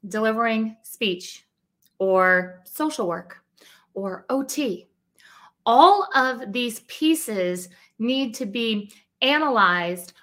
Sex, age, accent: female, 30-49, American